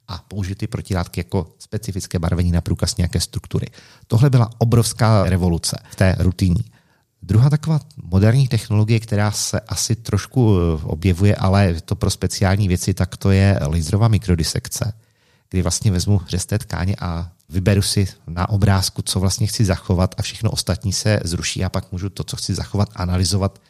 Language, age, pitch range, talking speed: Czech, 40-59, 90-110 Hz, 160 wpm